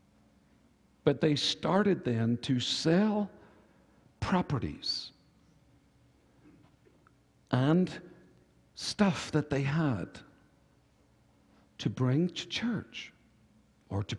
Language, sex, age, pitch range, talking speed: English, male, 60-79, 115-185 Hz, 75 wpm